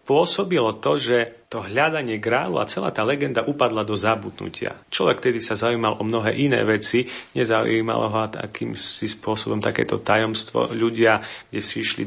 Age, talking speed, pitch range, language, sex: 40-59, 155 wpm, 110-125 Hz, Slovak, male